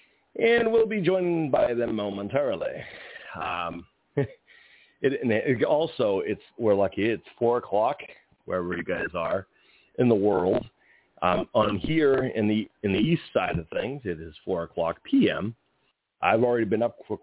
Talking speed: 155 wpm